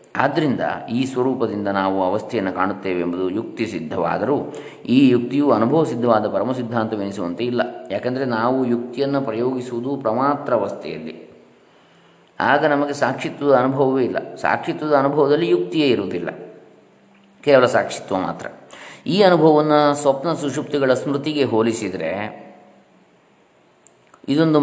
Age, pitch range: 20-39, 115-140 Hz